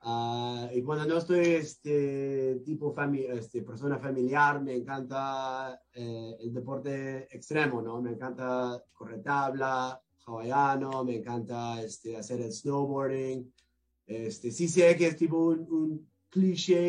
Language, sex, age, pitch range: English, male, 20-39, 120-145 Hz